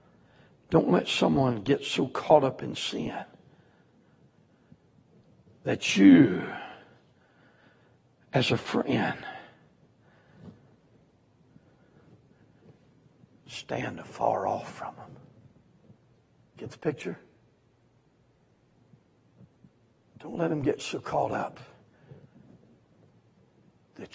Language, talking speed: English, 75 wpm